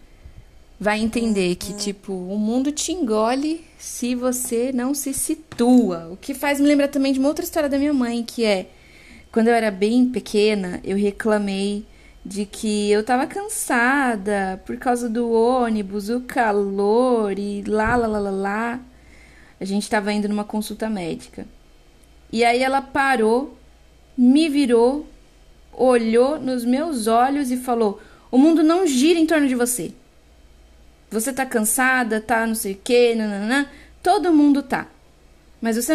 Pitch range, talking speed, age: 200-265 Hz, 155 wpm, 20-39